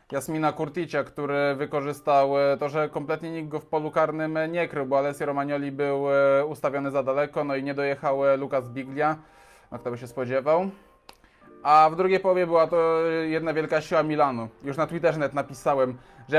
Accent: native